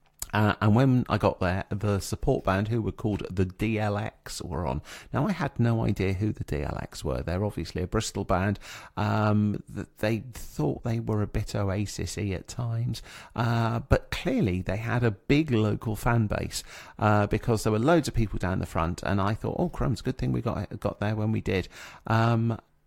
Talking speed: 195 wpm